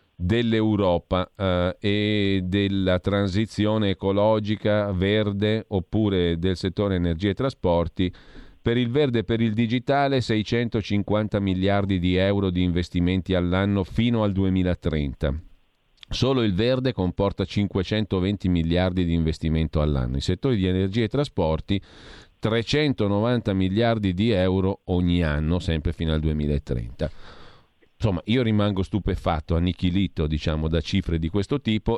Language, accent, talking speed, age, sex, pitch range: Italian, native, 120 wpm, 40-59, male, 90-110 Hz